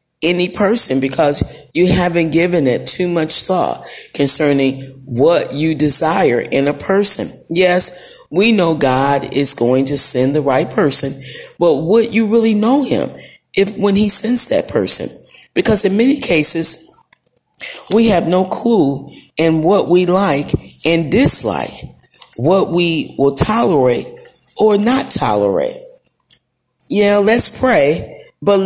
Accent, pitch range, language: American, 130-185 Hz, English